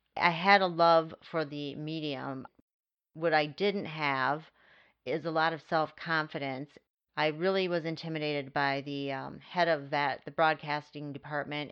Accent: American